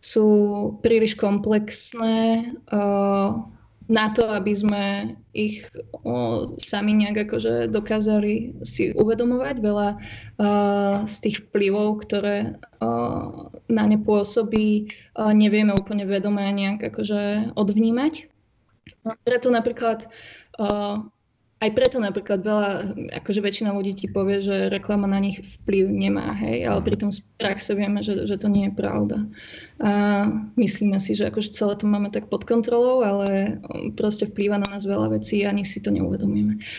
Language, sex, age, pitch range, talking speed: Slovak, female, 20-39, 200-220 Hz, 130 wpm